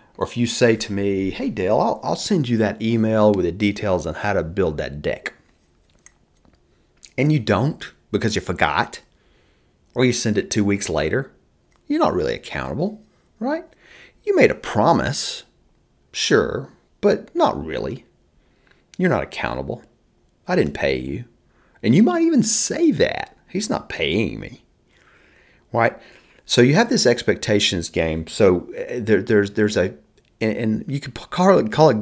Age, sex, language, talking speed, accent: 30-49, male, English, 155 wpm, American